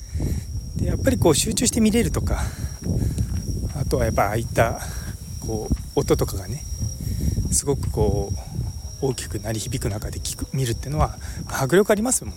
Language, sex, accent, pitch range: Japanese, male, native, 95-130 Hz